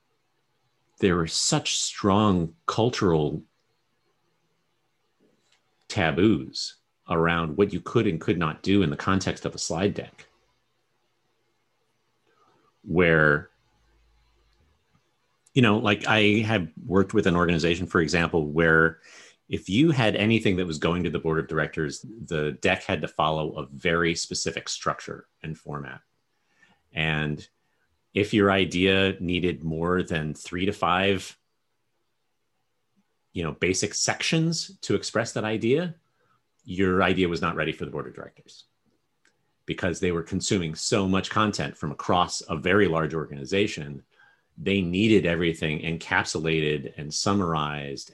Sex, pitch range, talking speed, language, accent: male, 80-105 Hz, 125 wpm, English, American